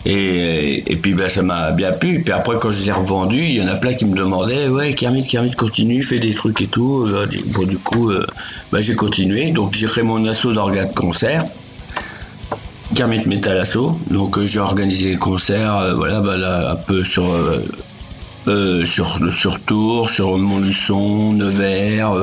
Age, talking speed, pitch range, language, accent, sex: 50-69, 190 wpm, 95-115 Hz, French, French, male